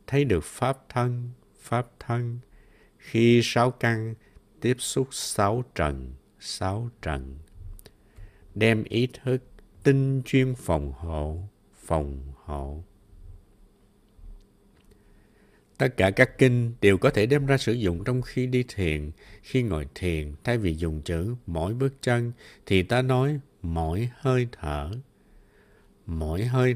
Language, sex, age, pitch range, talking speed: Vietnamese, male, 60-79, 85-120 Hz, 130 wpm